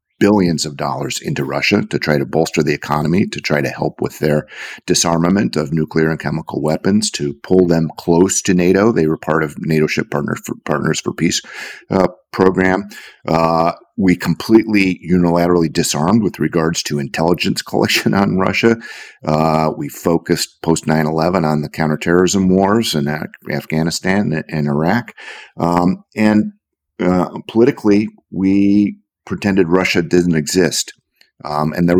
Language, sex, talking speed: English, male, 150 wpm